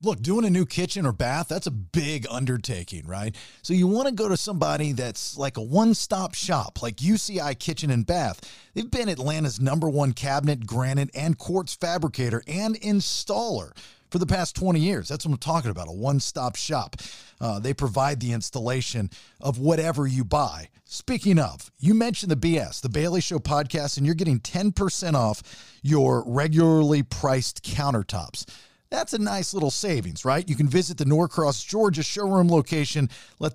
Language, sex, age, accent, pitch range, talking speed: English, male, 40-59, American, 125-175 Hz, 175 wpm